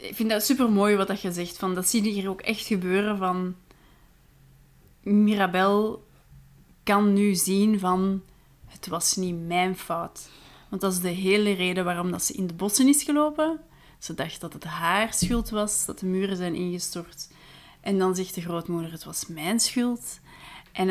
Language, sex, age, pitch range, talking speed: Dutch, female, 30-49, 175-225 Hz, 175 wpm